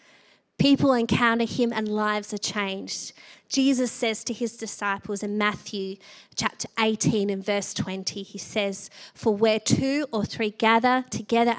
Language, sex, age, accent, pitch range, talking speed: English, female, 20-39, Australian, 205-240 Hz, 145 wpm